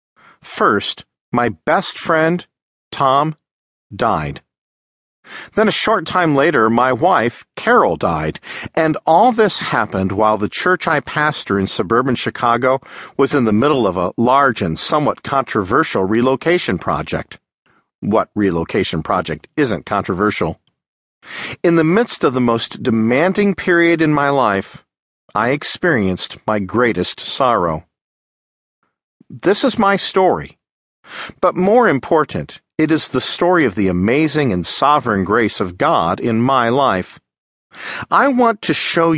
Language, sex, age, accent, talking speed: English, male, 50-69, American, 130 wpm